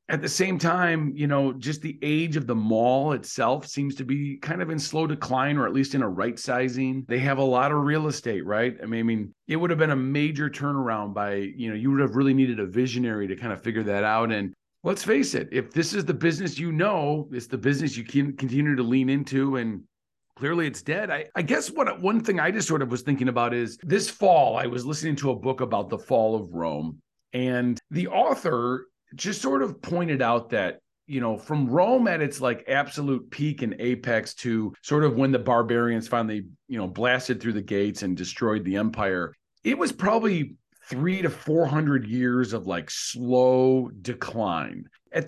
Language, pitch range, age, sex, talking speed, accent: English, 120-150 Hz, 40-59, male, 215 wpm, American